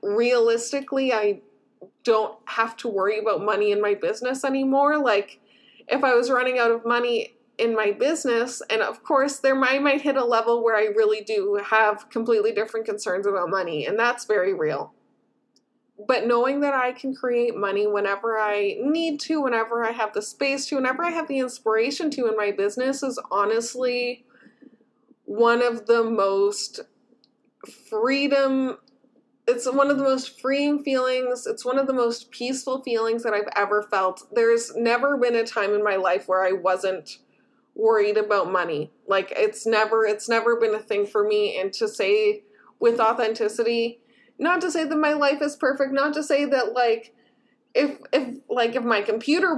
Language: English